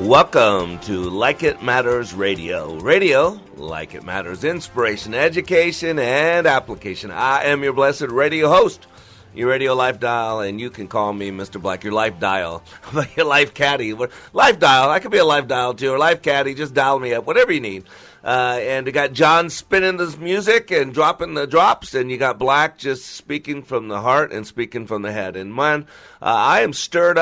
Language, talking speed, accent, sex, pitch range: English, 195 wpm, American, male, 120-175 Hz